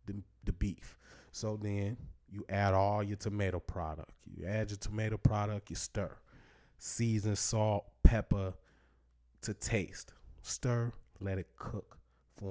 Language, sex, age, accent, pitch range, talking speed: English, male, 20-39, American, 90-110 Hz, 130 wpm